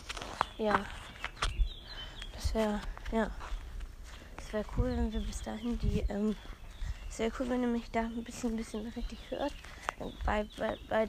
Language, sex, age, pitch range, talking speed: German, female, 20-39, 215-255 Hz, 140 wpm